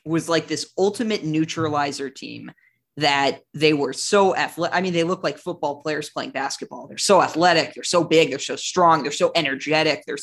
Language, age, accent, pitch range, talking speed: English, 20-39, American, 155-185 Hz, 195 wpm